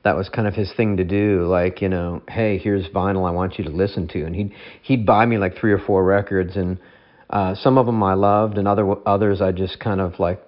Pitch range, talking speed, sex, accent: 95-115 Hz, 260 wpm, male, American